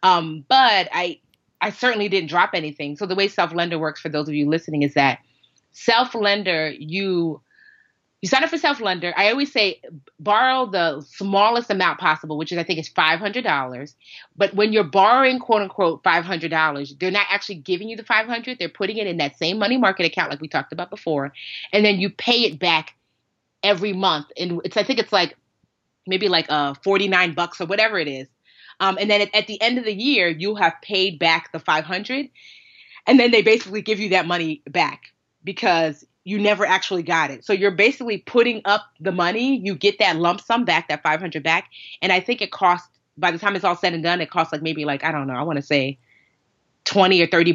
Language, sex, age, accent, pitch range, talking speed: English, female, 30-49, American, 160-205 Hz, 215 wpm